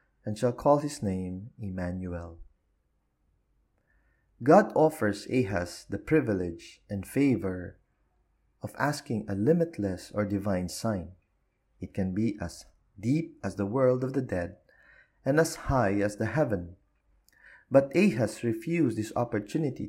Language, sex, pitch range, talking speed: English, male, 95-130 Hz, 125 wpm